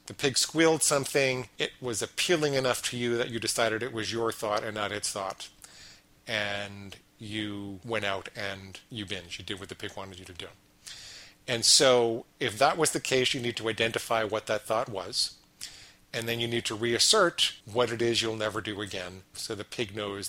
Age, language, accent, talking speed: 40-59, English, American, 205 wpm